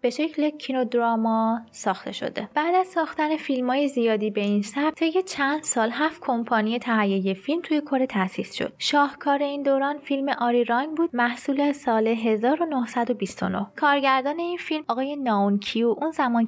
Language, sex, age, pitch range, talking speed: Persian, female, 20-39, 220-285 Hz, 160 wpm